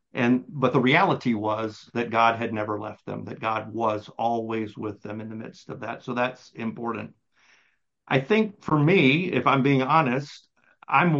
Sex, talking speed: male, 180 wpm